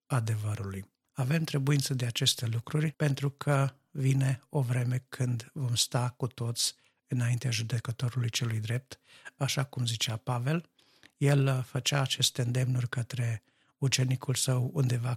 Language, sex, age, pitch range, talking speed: Romanian, male, 50-69, 115-135 Hz, 125 wpm